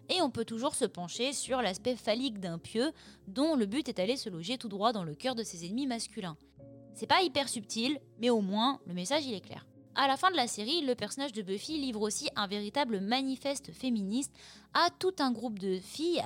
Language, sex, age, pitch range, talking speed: French, female, 20-39, 195-260 Hz, 225 wpm